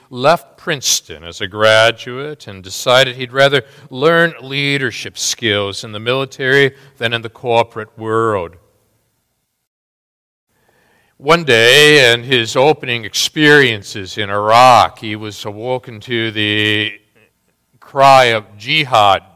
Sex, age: male, 50-69